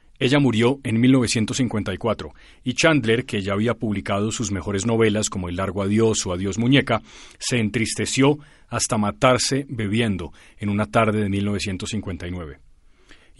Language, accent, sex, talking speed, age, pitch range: Spanish, Colombian, male, 135 wpm, 40-59, 105-125 Hz